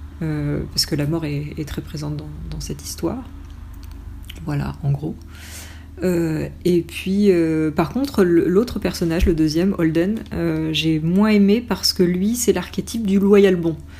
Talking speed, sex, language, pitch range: 165 wpm, female, French, 150-185 Hz